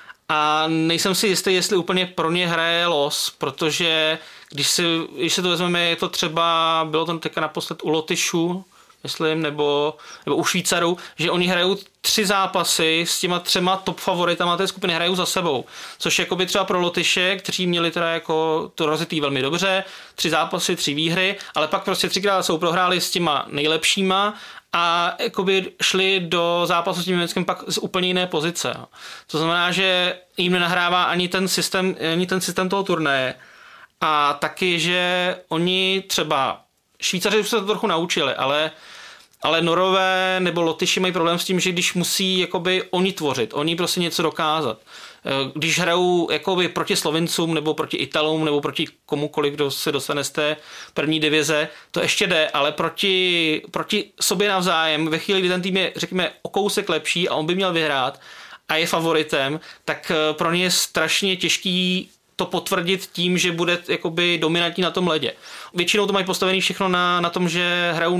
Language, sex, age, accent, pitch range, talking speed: Czech, male, 30-49, native, 160-185 Hz, 170 wpm